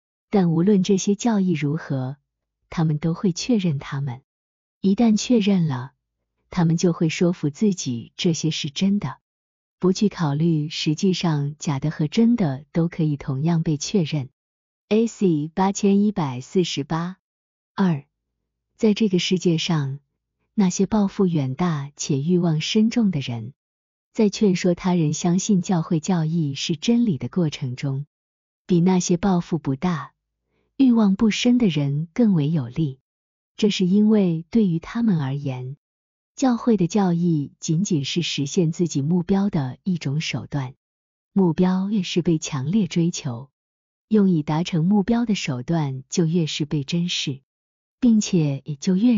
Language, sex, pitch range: Chinese, female, 145-195 Hz